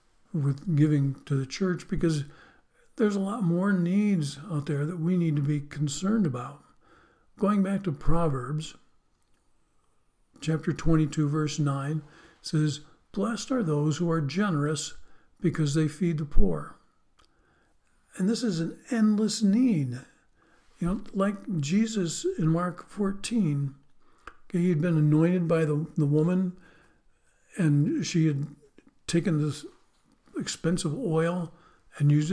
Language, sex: English, male